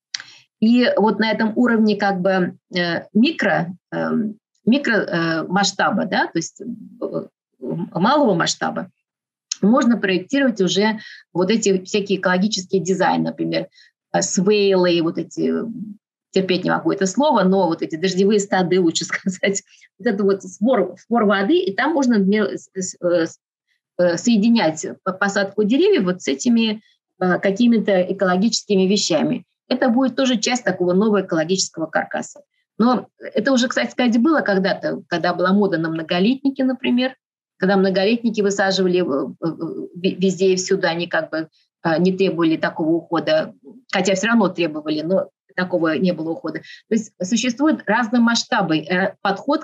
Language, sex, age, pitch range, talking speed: Russian, female, 30-49, 180-230 Hz, 120 wpm